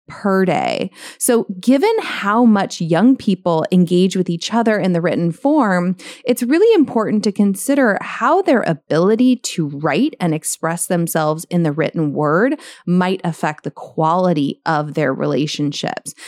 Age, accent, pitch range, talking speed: 30-49, American, 165-205 Hz, 150 wpm